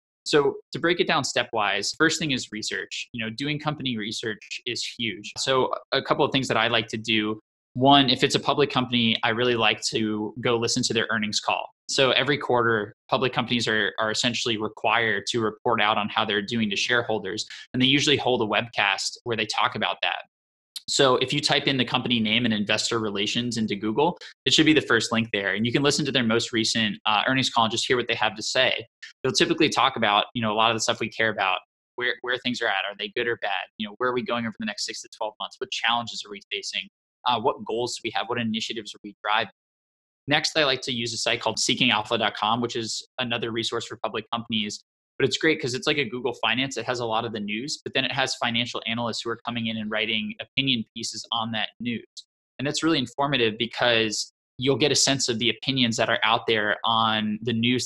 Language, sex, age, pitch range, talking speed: English, male, 20-39, 110-130 Hz, 240 wpm